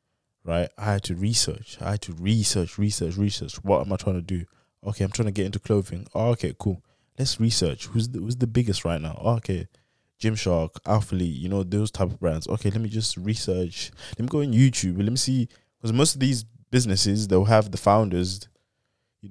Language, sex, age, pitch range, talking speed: English, male, 20-39, 95-115 Hz, 215 wpm